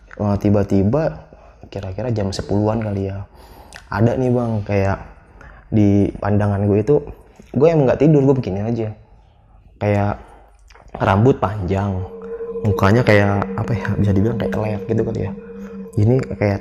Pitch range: 100-125 Hz